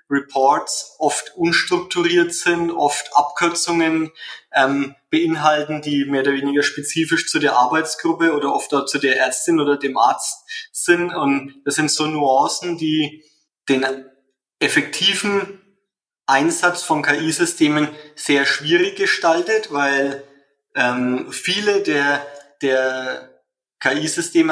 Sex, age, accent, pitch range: male, 20-39, German, 140-170 Hz